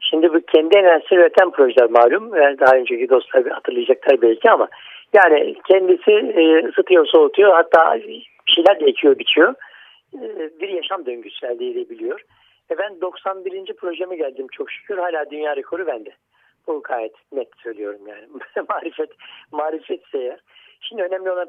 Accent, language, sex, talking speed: native, Turkish, male, 135 wpm